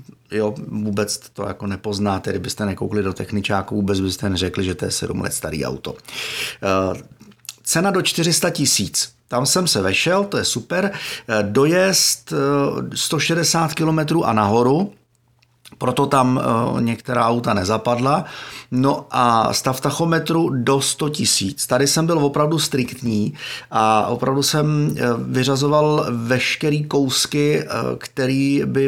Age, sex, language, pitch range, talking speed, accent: 30-49, male, Czech, 115-160 Hz, 125 wpm, native